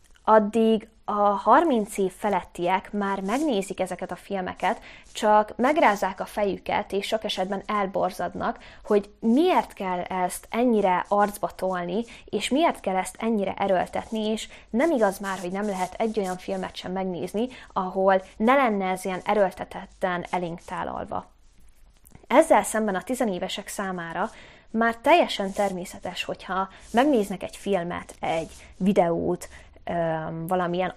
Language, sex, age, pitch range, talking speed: Hungarian, female, 20-39, 185-220 Hz, 130 wpm